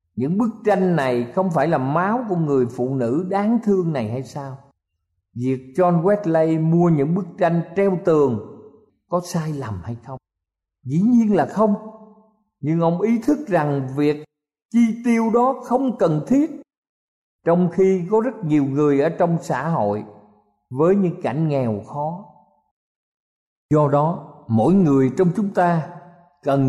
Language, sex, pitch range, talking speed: Vietnamese, male, 130-190 Hz, 155 wpm